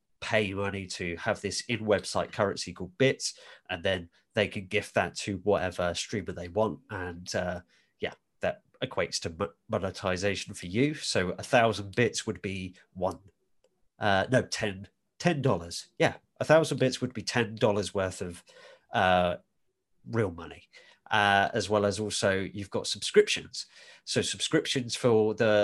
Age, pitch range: 30-49, 95-115 Hz